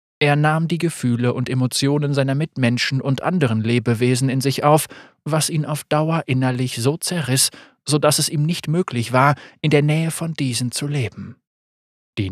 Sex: male